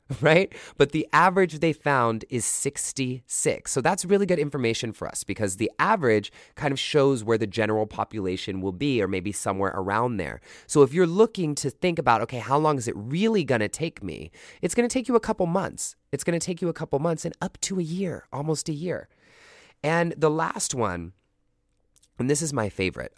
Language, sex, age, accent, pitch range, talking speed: English, male, 30-49, American, 110-160 Hz, 210 wpm